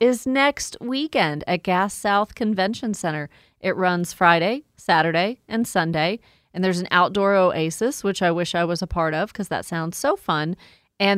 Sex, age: female, 30-49